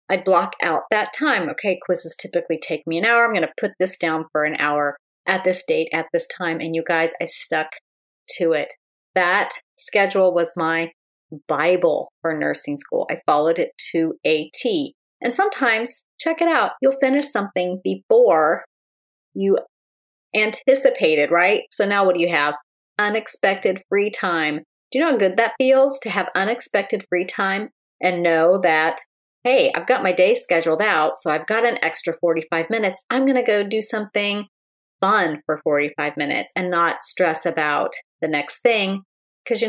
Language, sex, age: English, female, 30-49